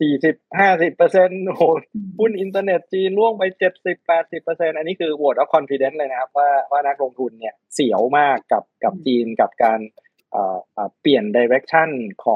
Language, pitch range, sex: Thai, 130-175 Hz, male